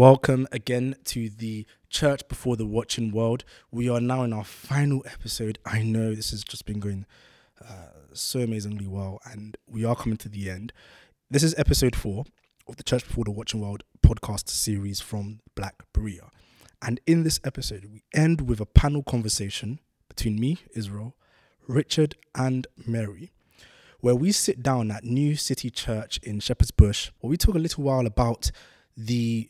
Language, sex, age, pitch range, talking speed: English, male, 20-39, 110-135 Hz, 175 wpm